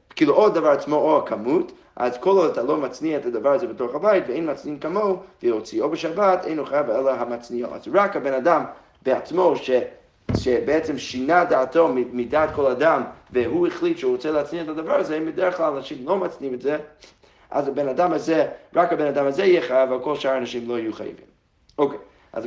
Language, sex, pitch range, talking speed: Hebrew, male, 130-180 Hz, 195 wpm